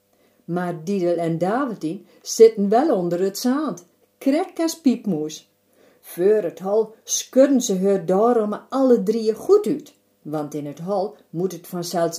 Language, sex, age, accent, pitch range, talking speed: Dutch, female, 50-69, Dutch, 165-260 Hz, 145 wpm